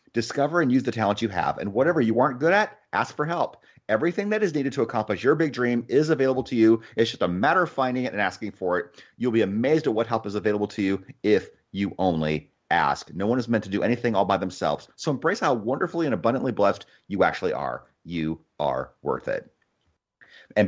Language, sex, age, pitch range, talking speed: English, male, 30-49, 105-140 Hz, 230 wpm